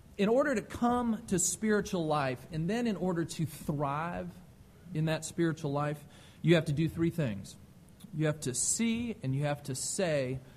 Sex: male